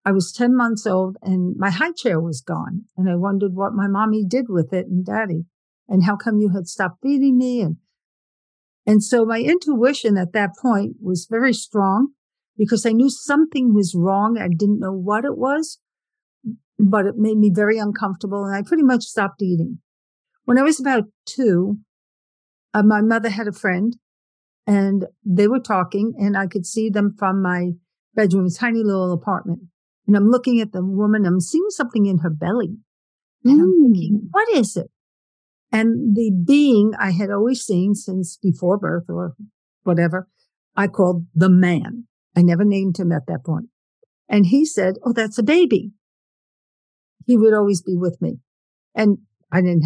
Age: 60-79